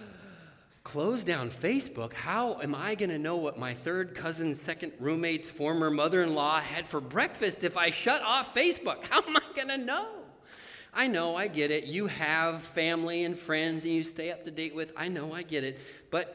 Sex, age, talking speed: male, 40-59, 200 wpm